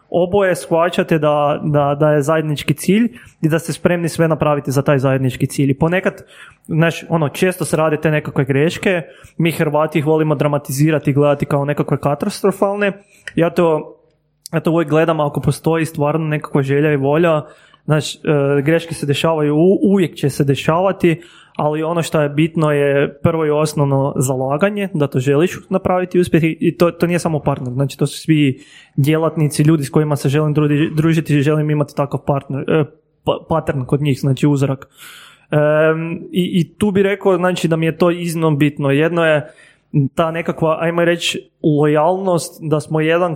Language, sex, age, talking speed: Croatian, male, 20-39, 175 wpm